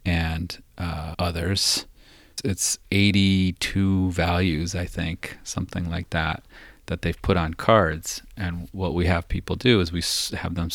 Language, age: English, 30-49